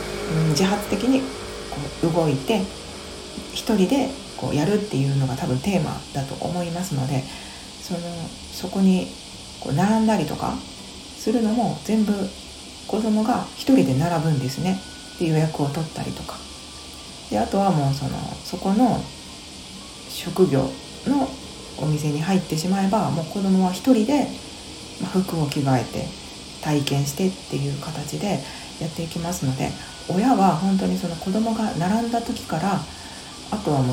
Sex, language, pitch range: female, Japanese, 140-200 Hz